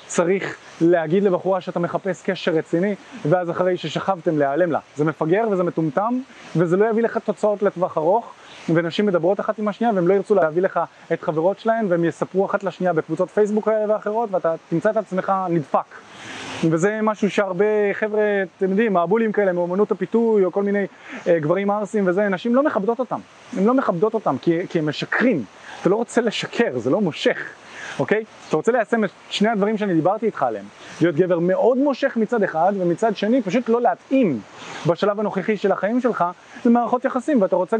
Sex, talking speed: male, 175 wpm